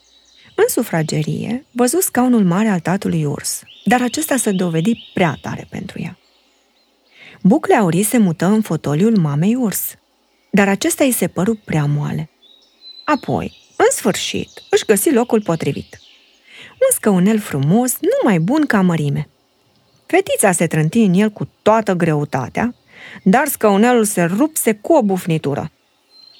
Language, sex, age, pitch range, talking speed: Romanian, female, 20-39, 170-255 Hz, 135 wpm